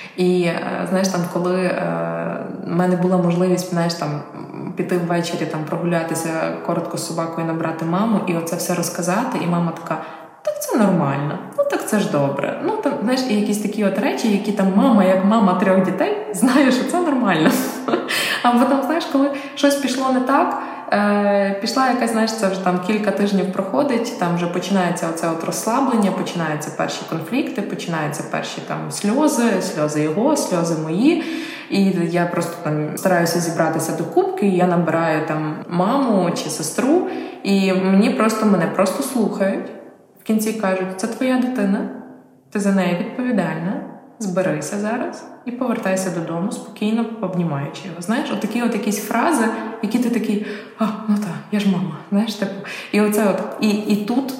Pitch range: 175-230 Hz